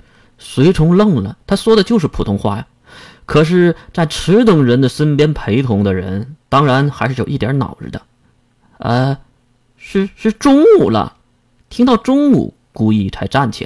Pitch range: 115-175 Hz